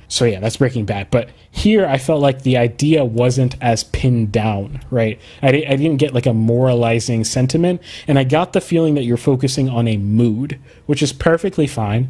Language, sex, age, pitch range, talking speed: English, male, 20-39, 110-135 Hz, 195 wpm